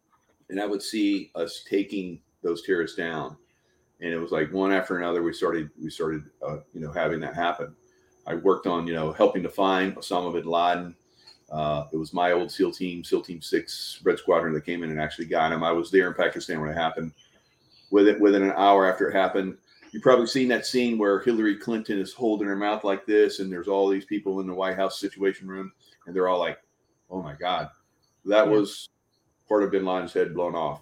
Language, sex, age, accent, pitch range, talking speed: English, male, 40-59, American, 90-115 Hz, 220 wpm